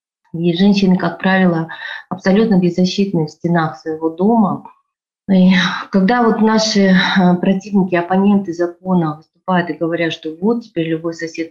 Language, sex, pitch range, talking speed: Russian, female, 165-205 Hz, 130 wpm